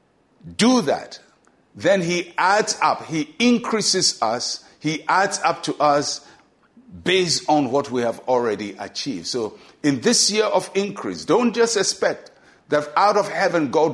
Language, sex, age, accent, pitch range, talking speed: English, male, 50-69, Nigerian, 125-185 Hz, 150 wpm